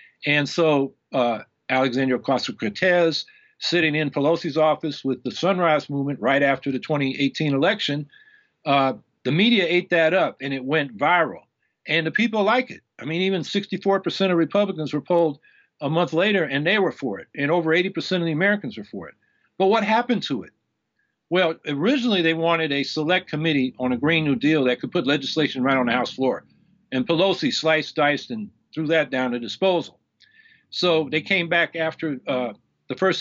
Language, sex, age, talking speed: English, male, 50-69, 185 wpm